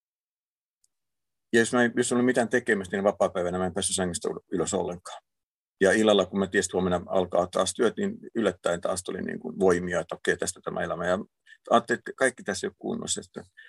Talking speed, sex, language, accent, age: 190 wpm, male, Finnish, native, 50-69